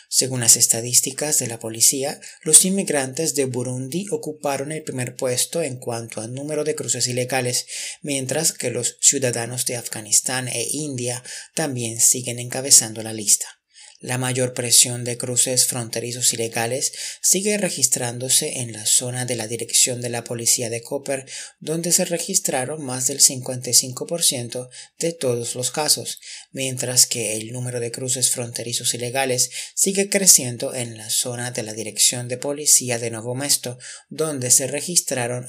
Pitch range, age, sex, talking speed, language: 120-145 Hz, 30-49, male, 150 wpm, Spanish